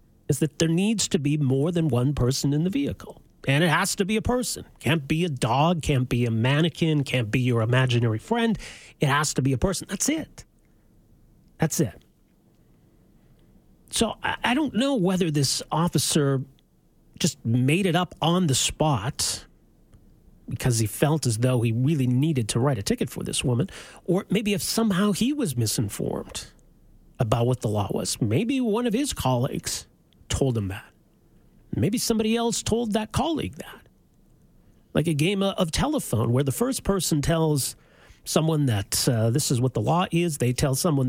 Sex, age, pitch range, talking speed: male, 40-59, 130-200 Hz, 175 wpm